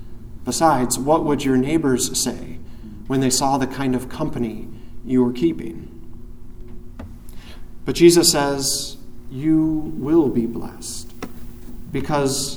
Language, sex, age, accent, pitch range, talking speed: English, male, 40-59, American, 135-195 Hz, 115 wpm